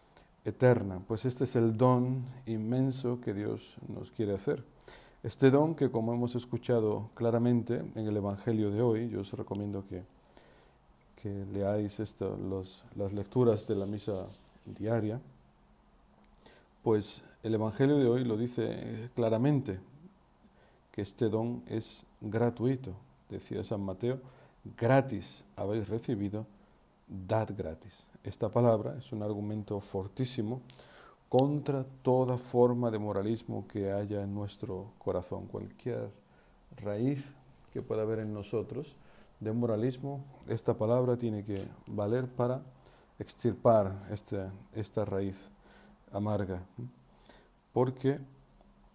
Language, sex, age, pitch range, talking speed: Spanish, male, 50-69, 100-125 Hz, 115 wpm